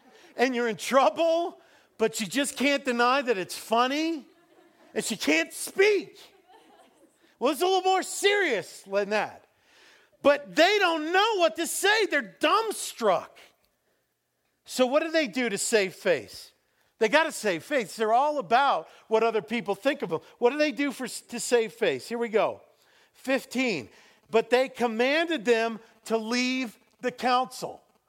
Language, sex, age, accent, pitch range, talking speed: English, male, 50-69, American, 225-315 Hz, 160 wpm